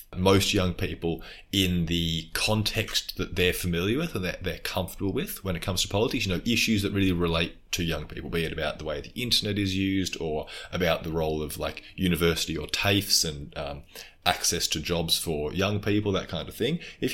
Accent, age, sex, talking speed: Australian, 20-39, male, 210 wpm